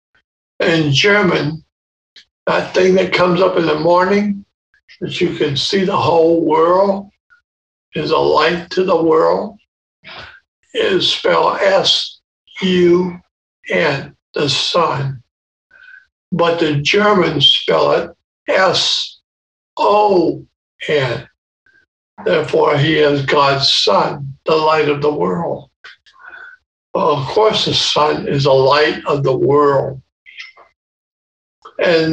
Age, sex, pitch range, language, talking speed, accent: 60-79, male, 150-205 Hz, English, 105 wpm, American